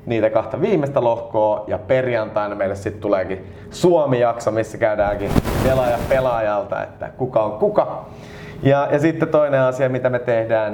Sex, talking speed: male, 140 wpm